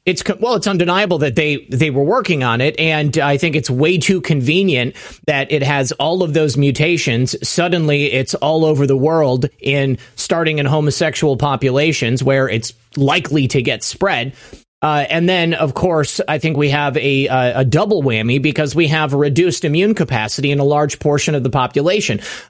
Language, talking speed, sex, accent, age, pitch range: English, 185 wpm, male, American, 30-49, 135-165 Hz